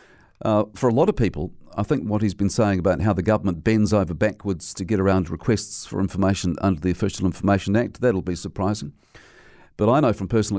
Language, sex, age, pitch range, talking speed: English, male, 50-69, 95-115 Hz, 215 wpm